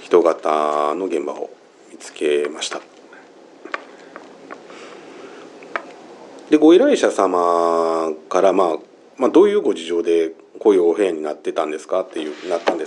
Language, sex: Japanese, male